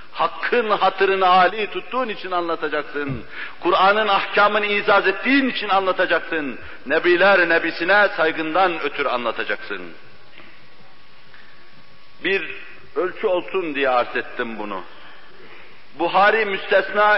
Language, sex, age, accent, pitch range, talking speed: Turkish, male, 60-79, native, 155-200 Hz, 85 wpm